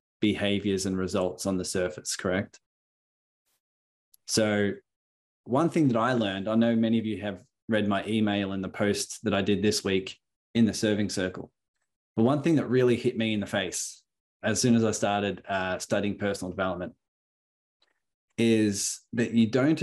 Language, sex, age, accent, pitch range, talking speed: English, male, 20-39, Australian, 100-120 Hz, 175 wpm